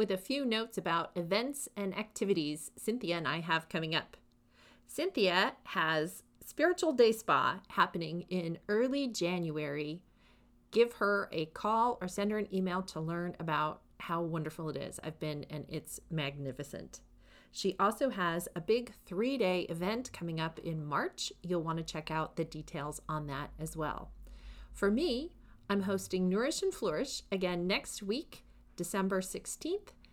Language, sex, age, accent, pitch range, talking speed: English, female, 40-59, American, 170-230 Hz, 155 wpm